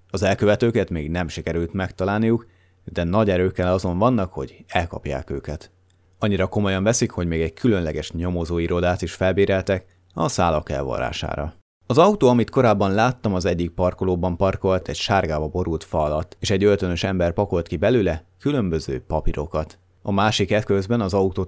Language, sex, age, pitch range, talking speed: Hungarian, male, 30-49, 80-100 Hz, 155 wpm